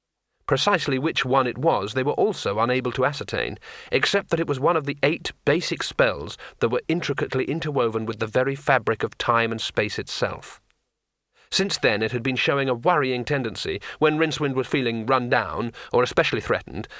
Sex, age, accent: male, 40-59, British